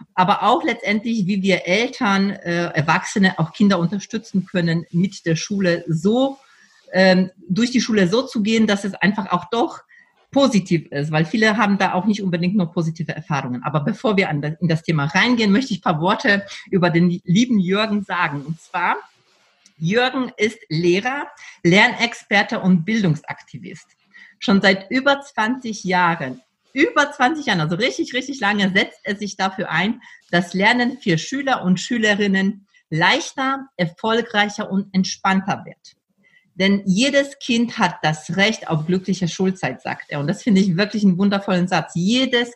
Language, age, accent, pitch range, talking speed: German, 40-59, German, 175-225 Hz, 160 wpm